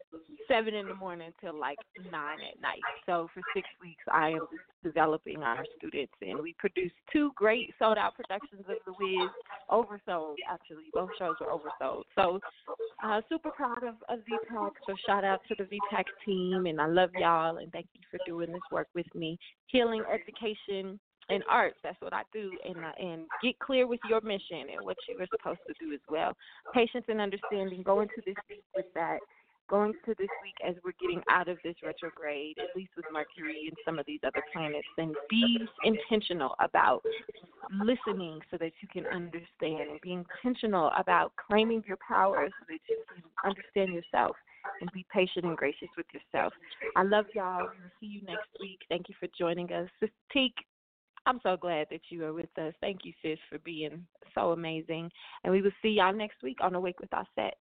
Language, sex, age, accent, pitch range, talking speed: English, female, 20-39, American, 170-215 Hz, 195 wpm